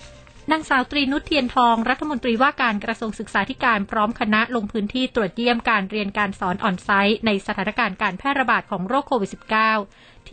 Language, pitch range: Thai, 200-235 Hz